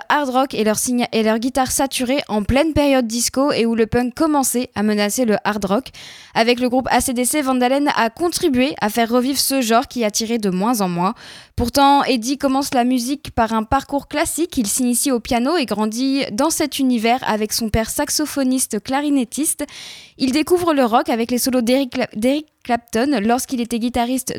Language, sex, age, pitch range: French, female, 10-29, 230-275 Hz